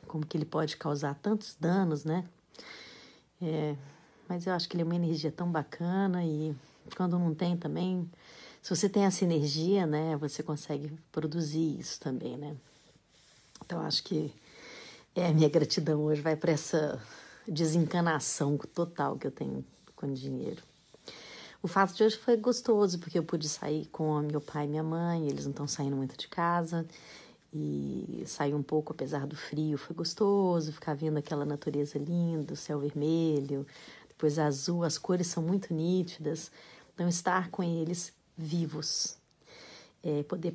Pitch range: 150-170 Hz